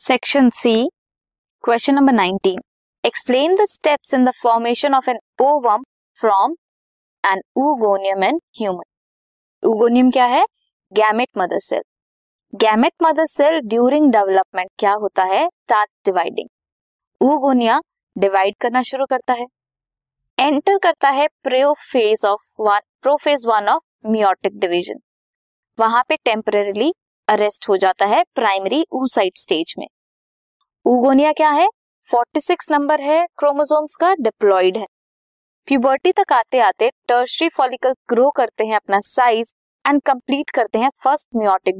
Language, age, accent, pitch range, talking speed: Hindi, 20-39, native, 210-295 Hz, 75 wpm